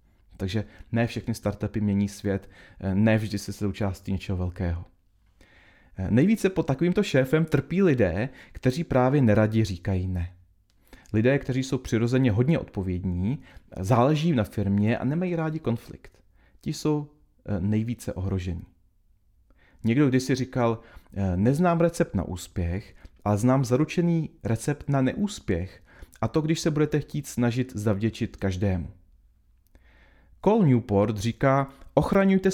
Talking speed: 125 wpm